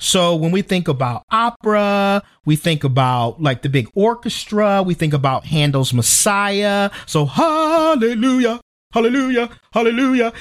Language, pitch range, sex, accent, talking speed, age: English, 155-230 Hz, male, American, 125 wpm, 40-59